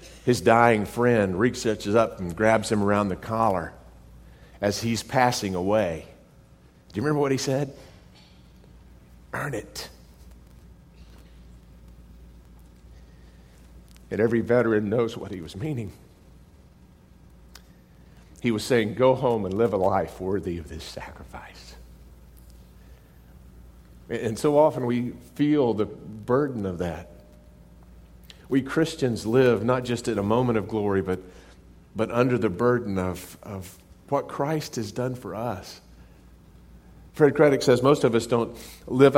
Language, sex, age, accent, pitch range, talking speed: English, male, 50-69, American, 80-120 Hz, 130 wpm